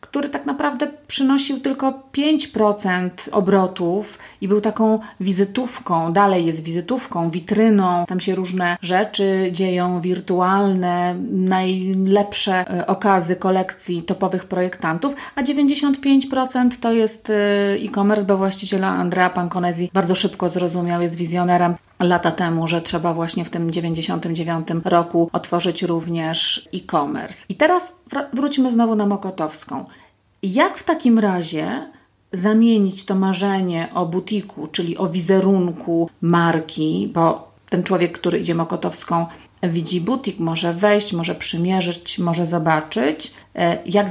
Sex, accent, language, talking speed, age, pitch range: female, native, Polish, 115 wpm, 40-59, 175-210 Hz